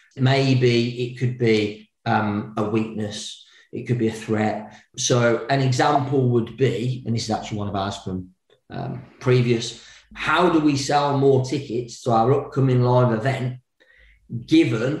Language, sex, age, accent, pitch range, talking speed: English, male, 40-59, British, 110-130 Hz, 155 wpm